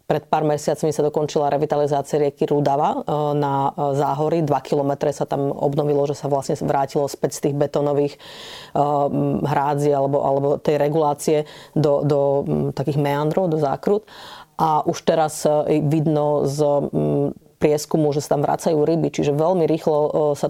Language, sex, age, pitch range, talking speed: Slovak, female, 30-49, 150-160 Hz, 145 wpm